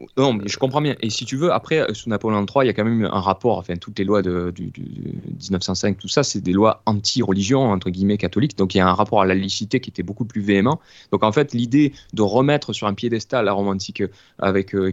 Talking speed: 255 wpm